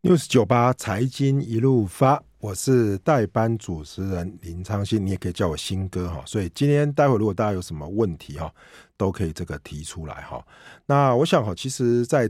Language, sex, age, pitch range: Chinese, male, 50-69, 85-115 Hz